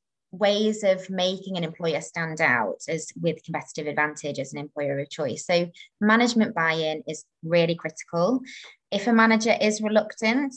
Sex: female